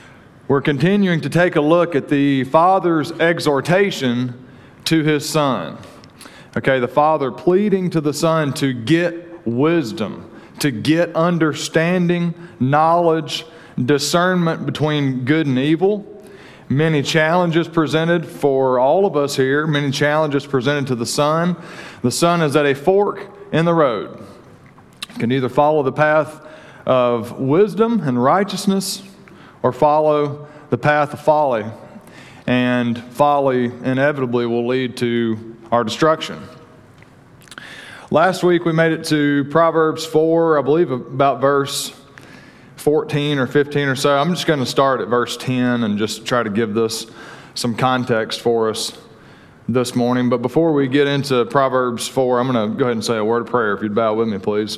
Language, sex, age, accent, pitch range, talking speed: English, male, 40-59, American, 125-160 Hz, 150 wpm